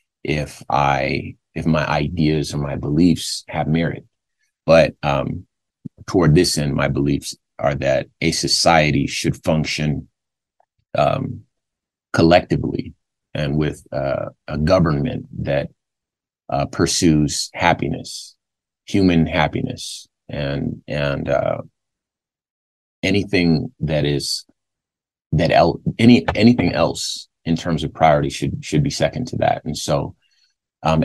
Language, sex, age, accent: English, male, 30-49, American